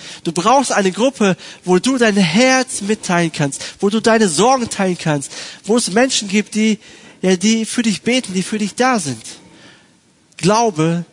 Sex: male